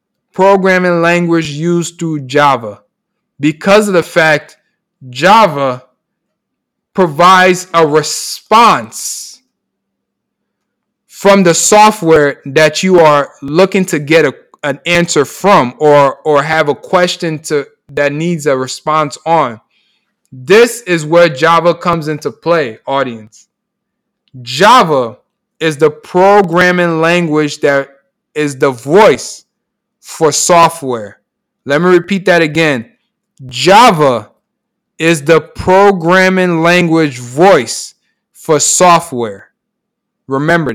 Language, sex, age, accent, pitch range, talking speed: English, male, 20-39, American, 155-200 Hz, 105 wpm